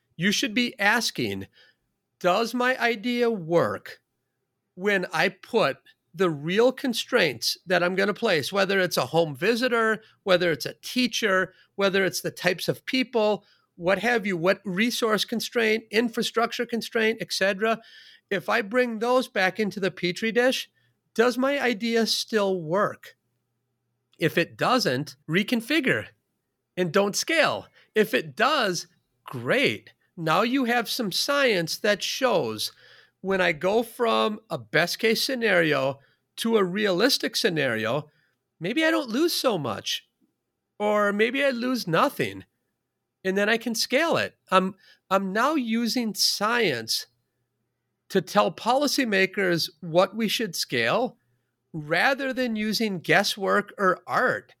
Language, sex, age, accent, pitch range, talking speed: English, male, 40-59, American, 170-235 Hz, 135 wpm